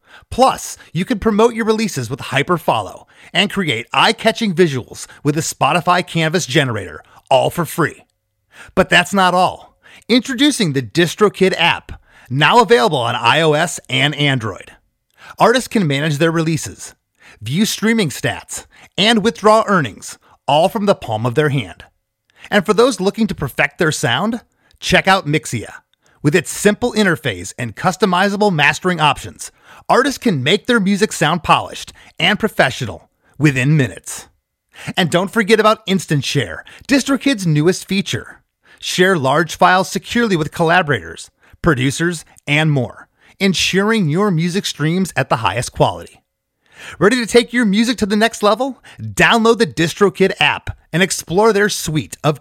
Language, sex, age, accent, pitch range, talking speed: English, male, 30-49, American, 145-215 Hz, 145 wpm